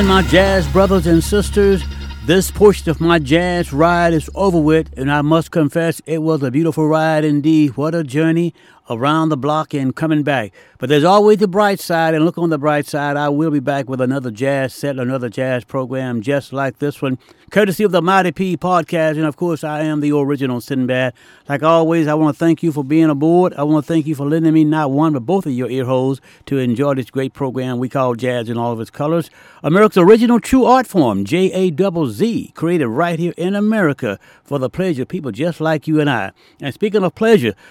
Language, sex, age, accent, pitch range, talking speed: English, male, 60-79, American, 135-170 Hz, 225 wpm